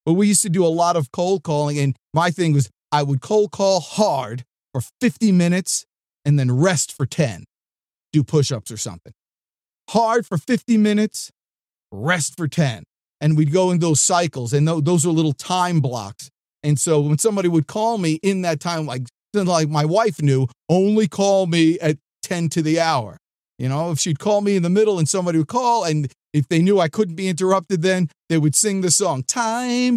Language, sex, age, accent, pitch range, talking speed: English, male, 40-59, American, 155-215 Hz, 200 wpm